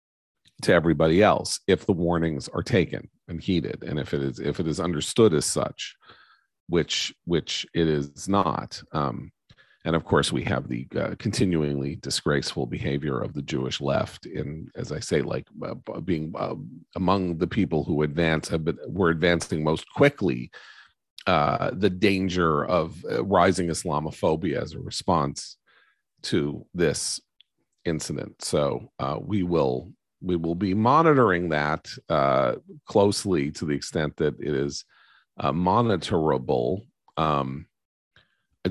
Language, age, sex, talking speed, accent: English, 40-59, male, 140 wpm, American